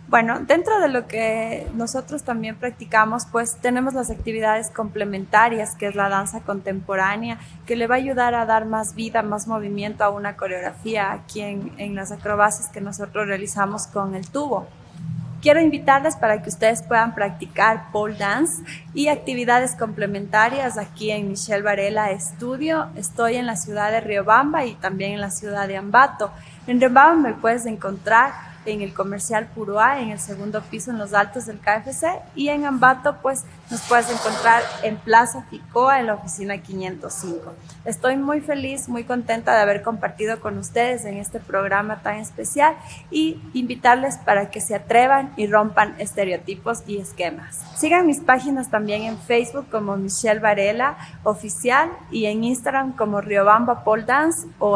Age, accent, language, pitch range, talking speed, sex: 20-39, Mexican, English, 200-245 Hz, 165 wpm, female